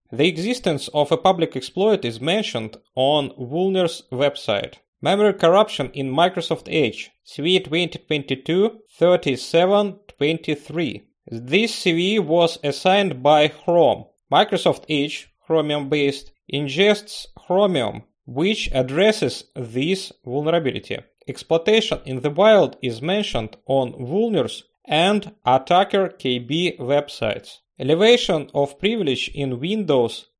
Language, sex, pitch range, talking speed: English, male, 140-190 Hz, 100 wpm